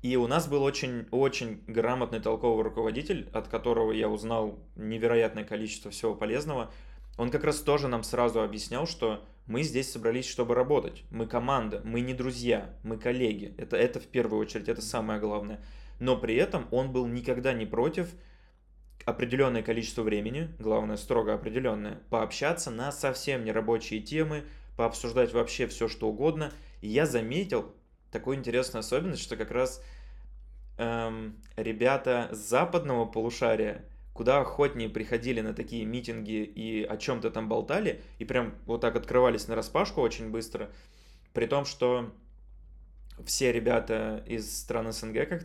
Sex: male